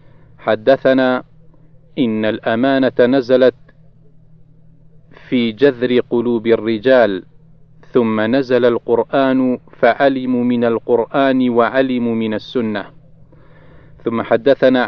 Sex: male